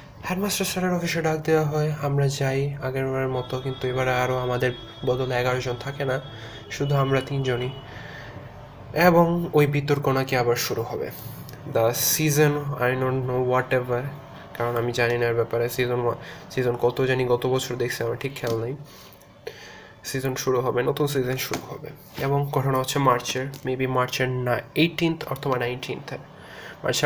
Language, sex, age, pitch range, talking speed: Bengali, male, 20-39, 125-145 Hz, 145 wpm